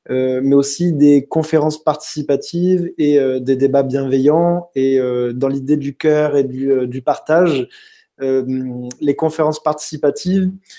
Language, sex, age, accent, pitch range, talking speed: French, male, 20-39, French, 135-155 Hz, 145 wpm